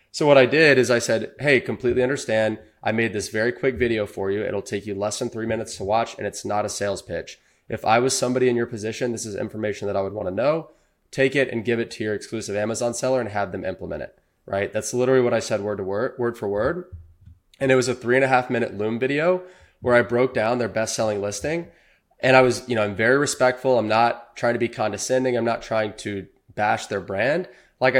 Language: English